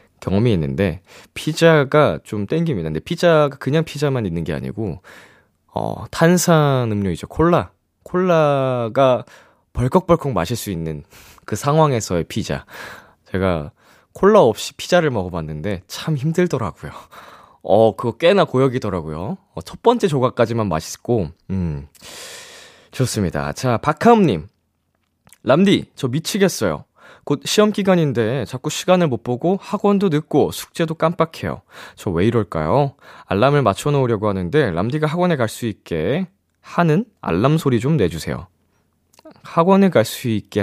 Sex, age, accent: male, 20-39, native